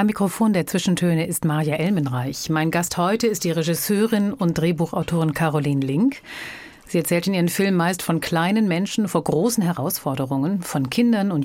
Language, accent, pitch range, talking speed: German, German, 150-200 Hz, 170 wpm